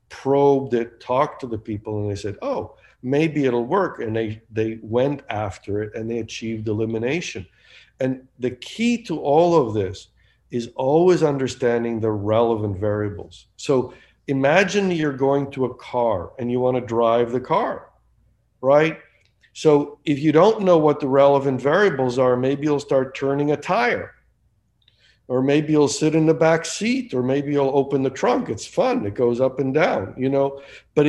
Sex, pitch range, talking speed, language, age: male, 115-145 Hz, 175 wpm, English, 50-69